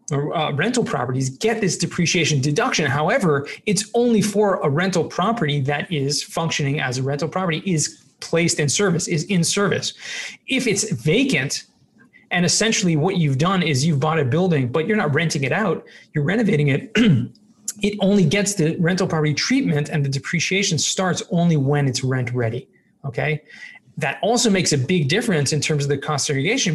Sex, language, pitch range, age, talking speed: male, English, 145-195 Hz, 30-49, 180 wpm